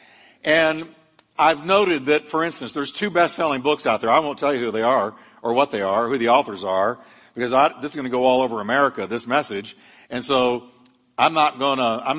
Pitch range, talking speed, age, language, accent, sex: 135-185 Hz, 210 wpm, 60-79, English, American, male